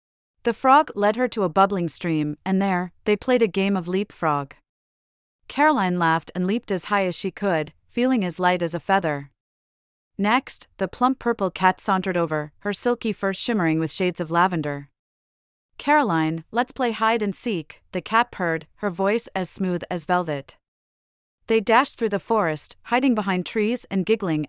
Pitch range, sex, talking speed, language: 160-215 Hz, female, 175 wpm, English